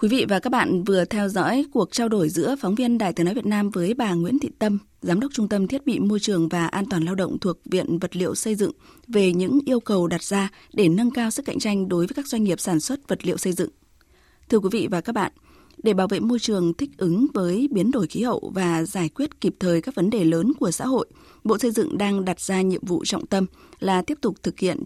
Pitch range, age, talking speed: 175-235 Hz, 20-39, 270 wpm